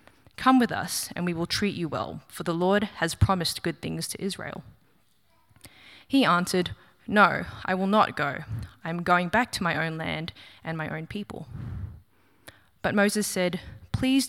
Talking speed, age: 170 wpm, 20-39